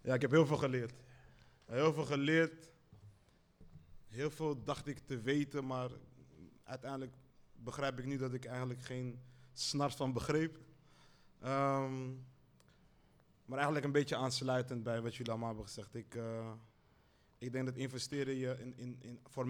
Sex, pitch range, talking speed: male, 120-140 Hz, 155 wpm